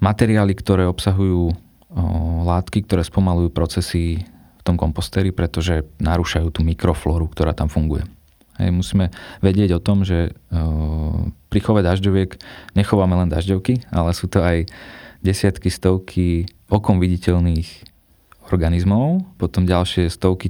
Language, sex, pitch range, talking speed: Slovak, male, 85-95 Hz, 125 wpm